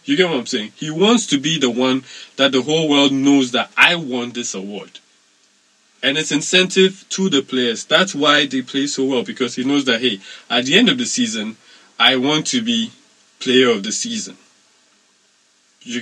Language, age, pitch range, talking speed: English, 20-39, 130-190 Hz, 200 wpm